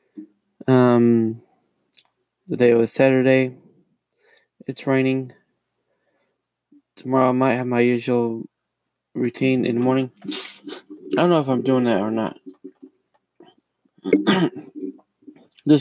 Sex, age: male, 20-39